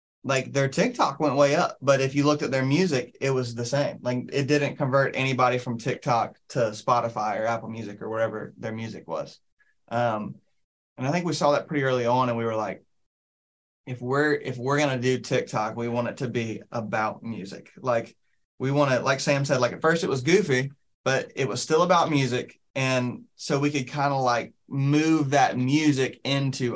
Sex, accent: male, American